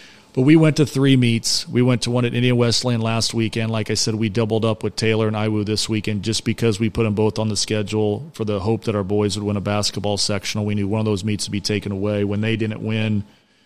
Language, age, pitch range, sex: English, 40-59, 105-115 Hz, male